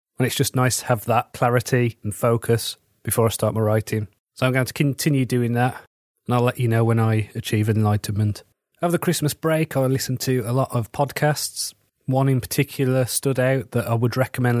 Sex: male